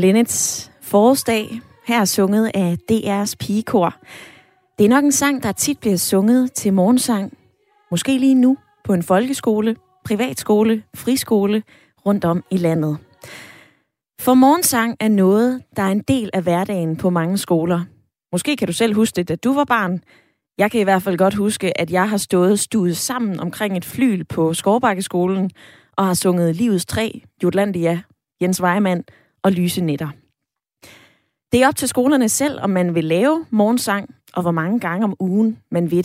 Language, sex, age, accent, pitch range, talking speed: Danish, female, 20-39, native, 180-240 Hz, 170 wpm